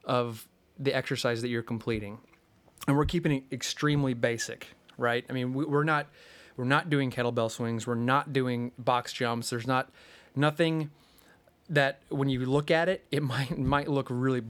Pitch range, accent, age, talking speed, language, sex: 120-140 Hz, American, 30-49, 170 wpm, English, male